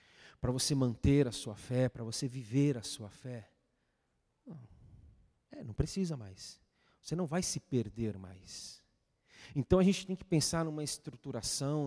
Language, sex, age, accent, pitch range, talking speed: Portuguese, male, 40-59, Brazilian, 115-170 Hz, 150 wpm